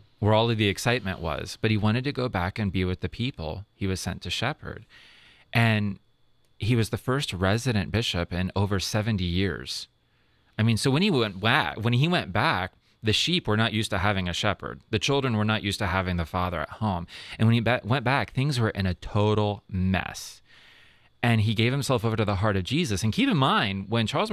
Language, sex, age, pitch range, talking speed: English, male, 30-49, 95-115 Hz, 215 wpm